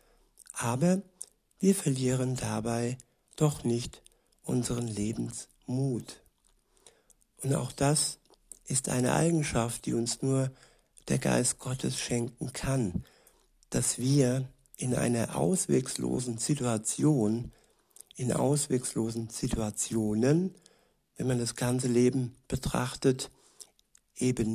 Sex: male